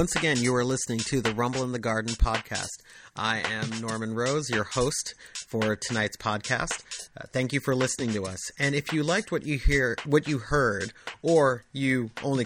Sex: male